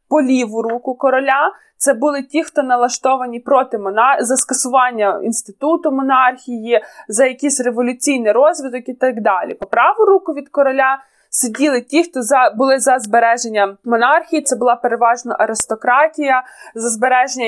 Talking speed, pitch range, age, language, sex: 135 wpm, 235-285 Hz, 20-39, Ukrainian, female